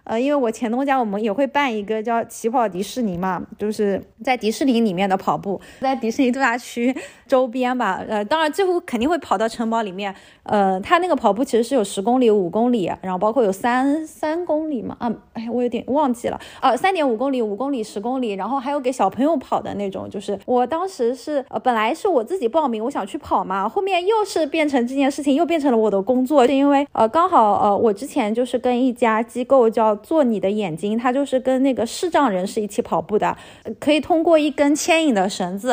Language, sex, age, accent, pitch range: Chinese, female, 20-39, native, 215-275 Hz